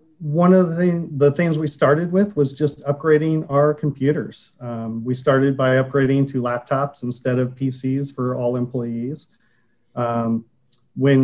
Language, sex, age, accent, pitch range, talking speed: English, male, 40-59, American, 120-140 Hz, 150 wpm